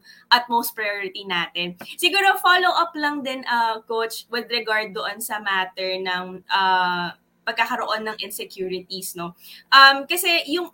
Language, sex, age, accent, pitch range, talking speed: English, female, 20-39, Filipino, 205-280 Hz, 135 wpm